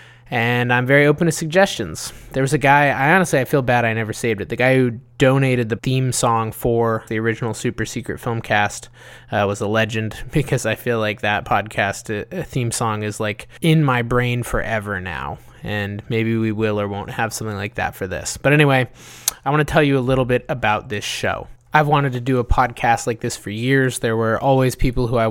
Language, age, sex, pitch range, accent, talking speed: English, 20-39, male, 115-135 Hz, American, 220 wpm